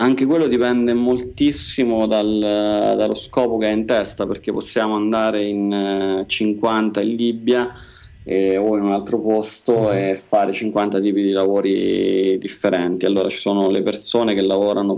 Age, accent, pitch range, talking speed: 30-49, native, 95-115 Hz, 150 wpm